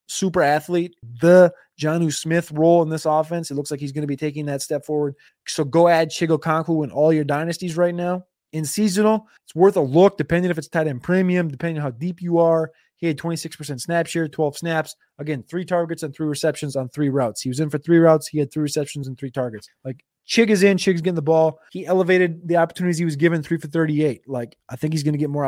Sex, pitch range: male, 140-170 Hz